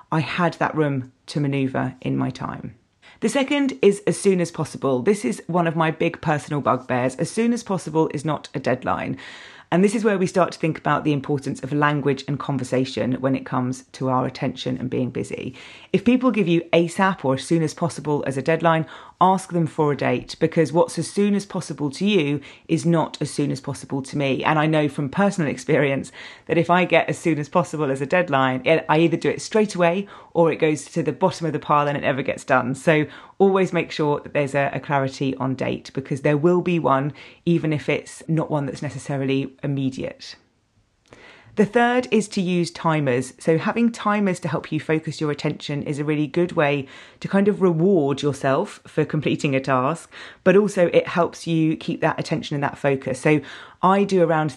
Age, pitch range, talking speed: 30-49, 140-170 Hz, 215 wpm